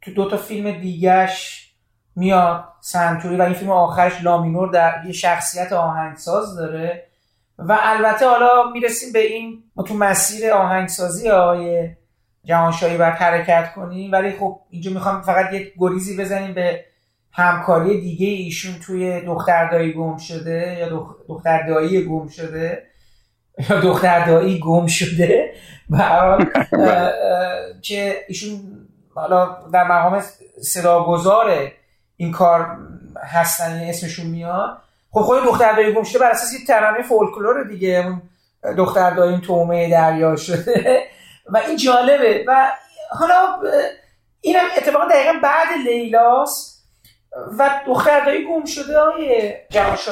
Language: Persian